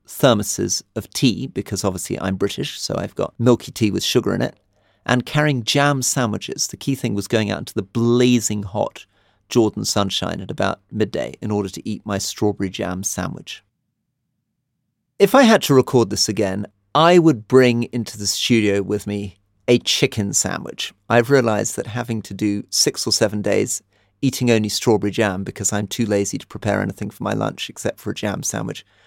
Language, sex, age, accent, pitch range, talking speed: English, male, 40-59, British, 100-120 Hz, 185 wpm